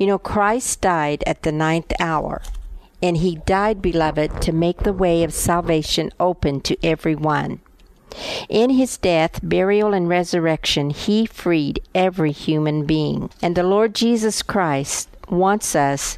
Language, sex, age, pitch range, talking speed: English, female, 50-69, 160-200 Hz, 145 wpm